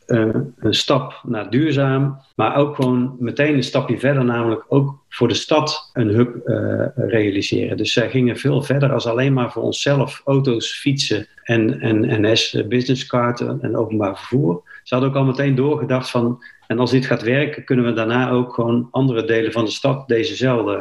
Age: 50-69